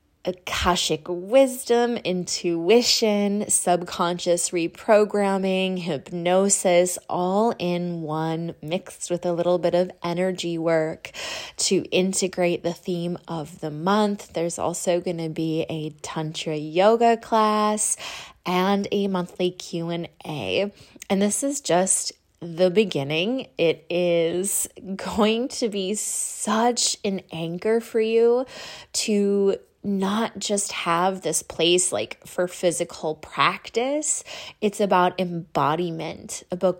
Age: 20-39